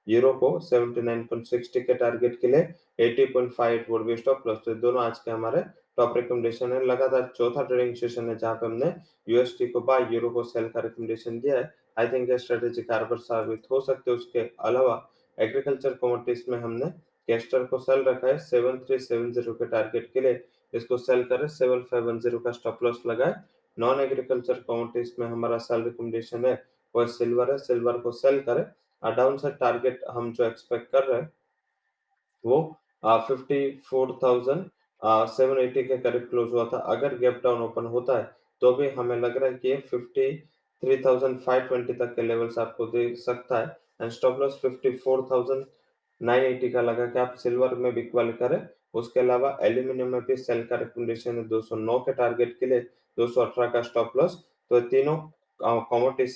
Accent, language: Indian, English